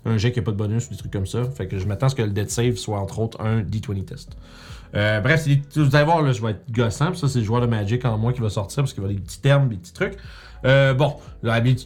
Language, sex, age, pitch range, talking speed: French, male, 30-49, 110-145 Hz, 320 wpm